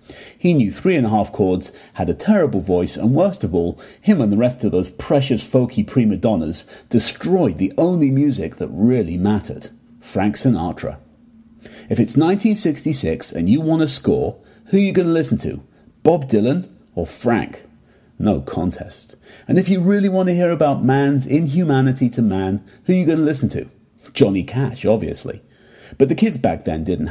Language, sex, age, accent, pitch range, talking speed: English, male, 40-59, British, 105-160 Hz, 185 wpm